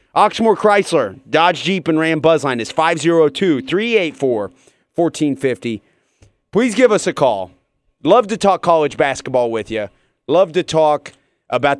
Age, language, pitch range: 30-49, English, 120-160 Hz